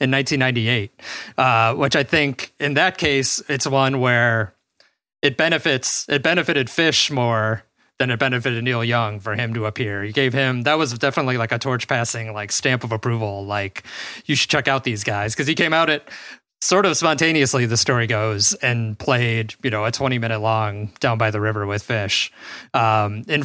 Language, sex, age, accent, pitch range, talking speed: English, male, 30-49, American, 110-145 Hz, 190 wpm